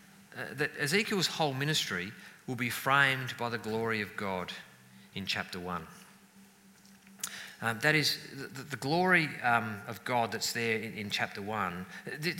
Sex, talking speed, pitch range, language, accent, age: male, 150 wpm, 105-145 Hz, English, Australian, 40-59